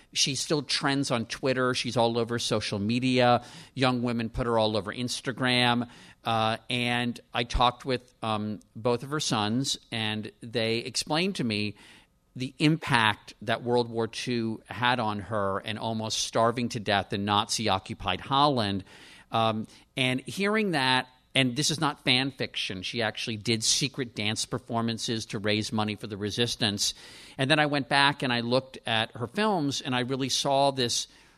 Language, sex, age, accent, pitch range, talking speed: English, male, 50-69, American, 110-130 Hz, 165 wpm